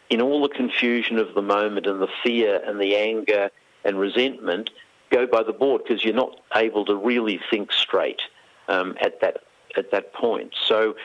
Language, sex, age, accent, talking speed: English, male, 50-69, Australian, 185 wpm